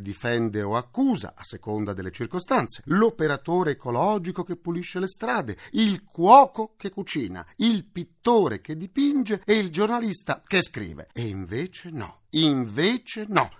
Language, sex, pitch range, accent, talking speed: Italian, male, 115-180 Hz, native, 135 wpm